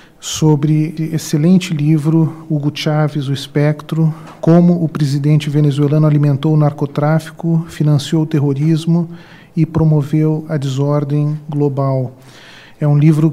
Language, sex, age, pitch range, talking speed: Portuguese, male, 40-59, 145-165 Hz, 115 wpm